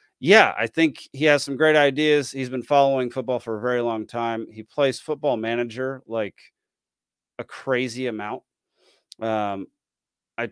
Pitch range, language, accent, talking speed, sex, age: 115-145 Hz, English, American, 155 wpm, male, 30-49